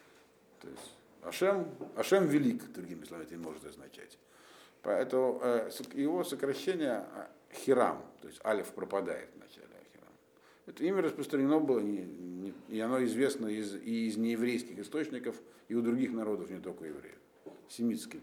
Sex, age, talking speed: male, 50-69, 150 wpm